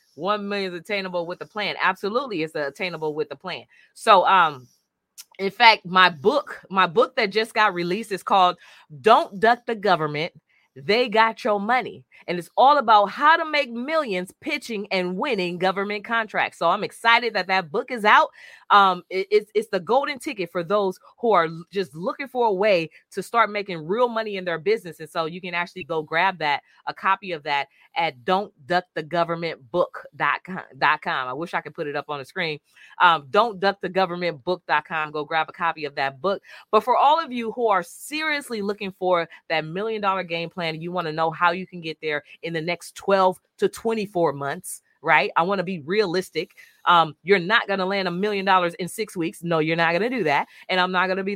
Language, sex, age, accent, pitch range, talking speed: English, female, 20-39, American, 170-210 Hz, 215 wpm